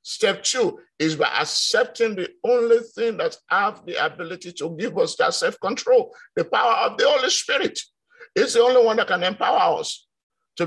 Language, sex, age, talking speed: English, male, 50-69, 180 wpm